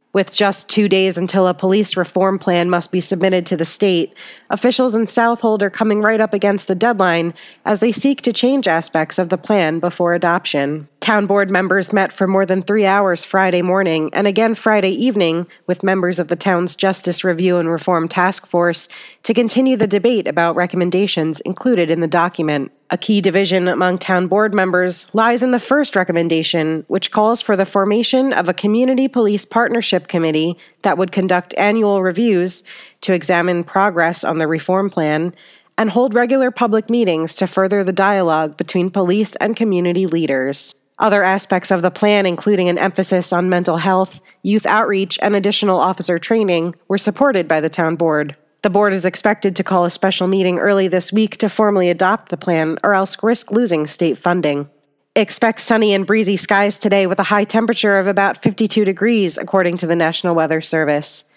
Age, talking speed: 30-49, 185 wpm